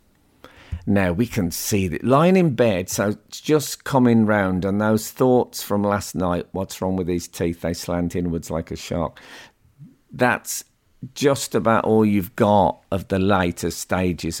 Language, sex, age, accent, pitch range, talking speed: English, male, 50-69, British, 90-120 Hz, 165 wpm